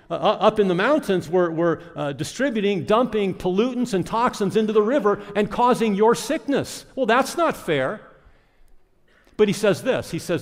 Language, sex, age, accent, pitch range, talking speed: English, male, 50-69, American, 150-210 Hz, 175 wpm